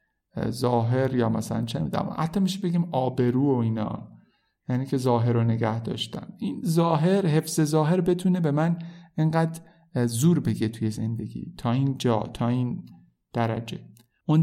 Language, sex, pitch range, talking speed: Persian, male, 115-165 Hz, 140 wpm